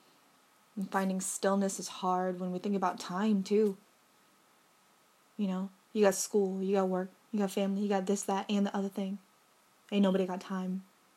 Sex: female